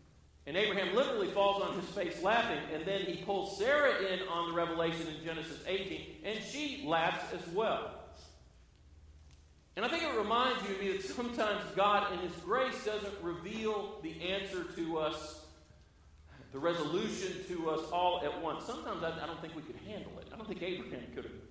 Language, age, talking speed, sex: English, 40-59, 185 wpm, male